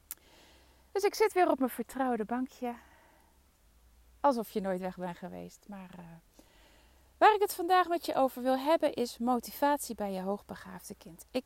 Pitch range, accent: 185-250 Hz, Dutch